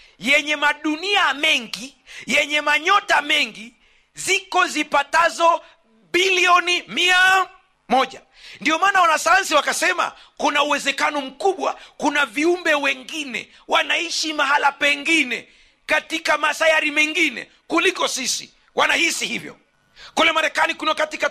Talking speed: 100 wpm